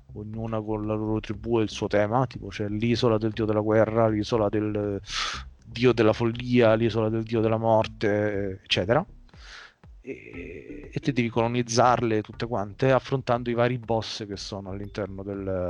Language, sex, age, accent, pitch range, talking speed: Italian, male, 30-49, native, 105-125 Hz, 160 wpm